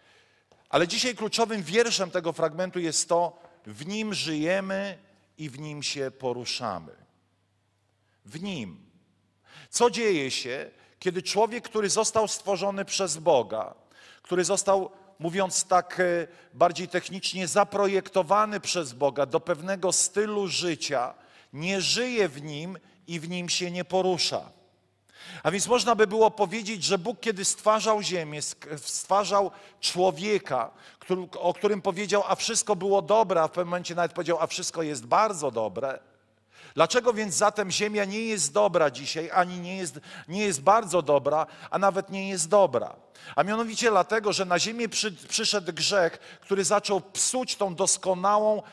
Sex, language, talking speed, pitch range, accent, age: male, Polish, 140 wpm, 170-205 Hz, native, 40-59